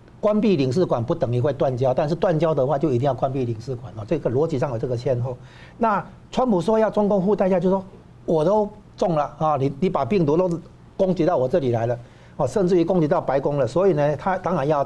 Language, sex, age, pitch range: Chinese, male, 60-79, 125-170 Hz